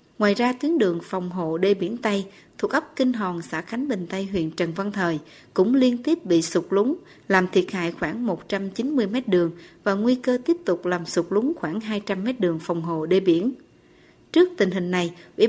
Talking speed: 205 wpm